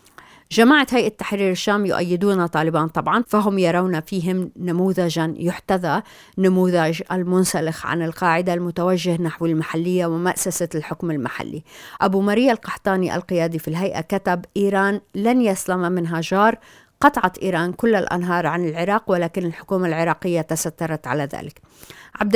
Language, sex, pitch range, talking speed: Arabic, female, 170-195 Hz, 125 wpm